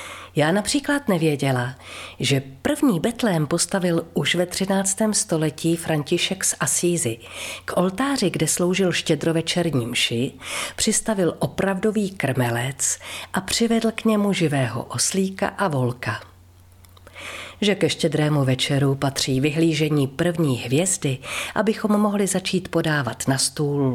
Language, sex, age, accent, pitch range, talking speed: Czech, female, 40-59, native, 135-200 Hz, 115 wpm